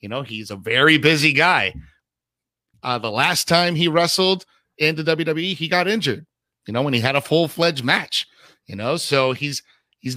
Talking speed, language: 190 wpm, English